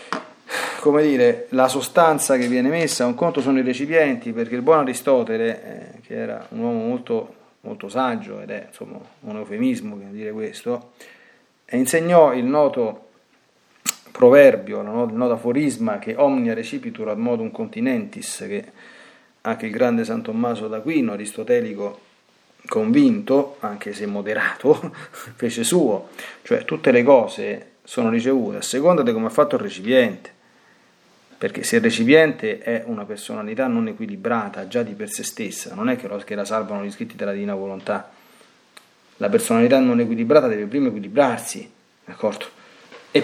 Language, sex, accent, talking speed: Italian, male, native, 150 wpm